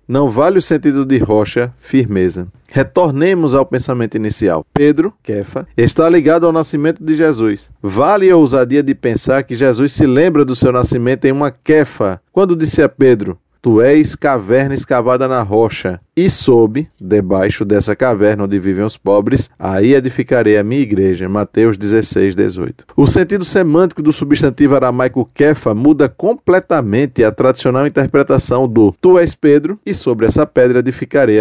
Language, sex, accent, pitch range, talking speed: Portuguese, male, Brazilian, 110-145 Hz, 155 wpm